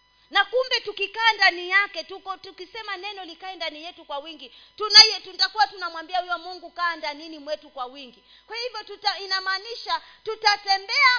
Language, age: Swahili, 30-49